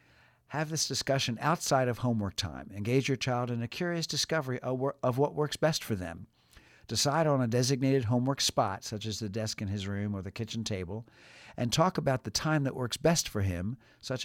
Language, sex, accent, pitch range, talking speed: English, male, American, 105-135 Hz, 200 wpm